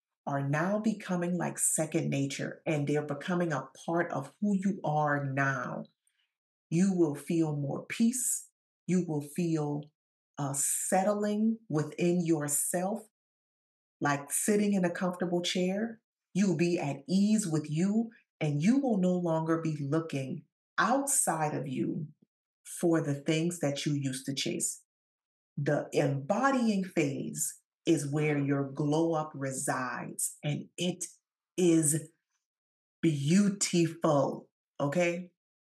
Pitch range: 145-180 Hz